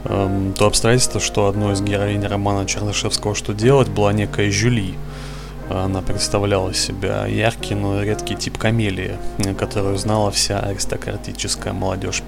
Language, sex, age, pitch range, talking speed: Russian, male, 20-39, 95-110 Hz, 125 wpm